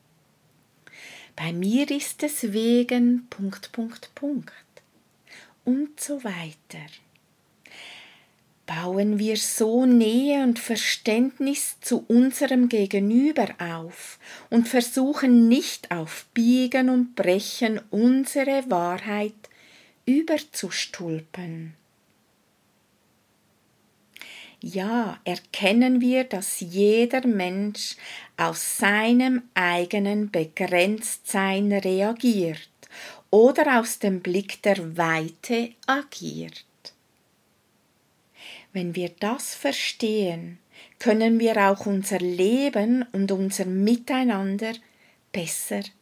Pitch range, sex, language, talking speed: 195-250 Hz, female, German, 80 wpm